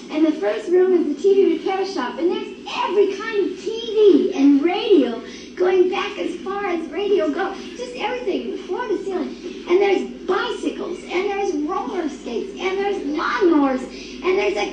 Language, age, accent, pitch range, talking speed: English, 50-69, American, 310-375 Hz, 170 wpm